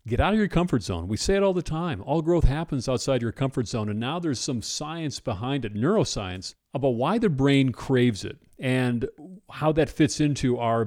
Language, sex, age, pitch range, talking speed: English, male, 40-59, 105-140 Hz, 215 wpm